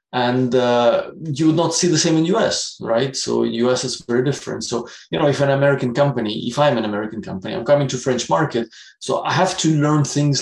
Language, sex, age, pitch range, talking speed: English, male, 20-39, 115-135 Hz, 225 wpm